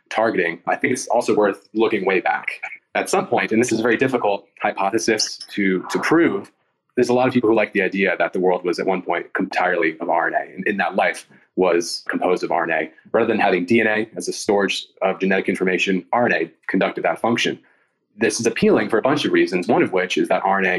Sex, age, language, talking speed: male, 30-49, English, 220 wpm